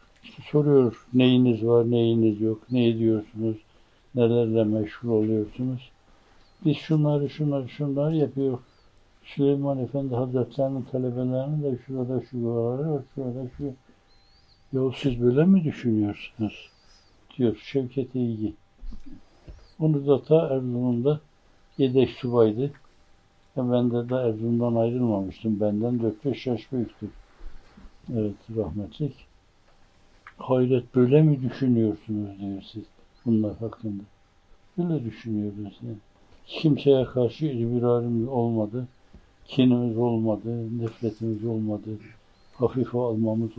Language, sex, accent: Turkish, male, native